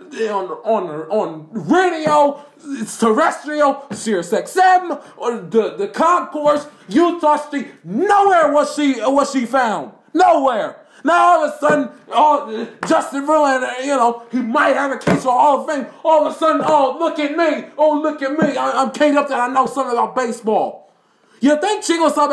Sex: male